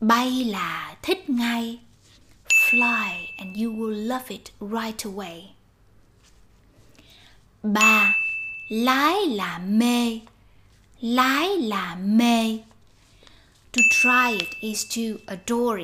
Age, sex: 20-39, female